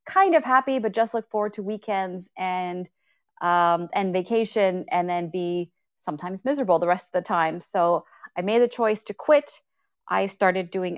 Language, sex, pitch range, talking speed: English, female, 185-245 Hz, 180 wpm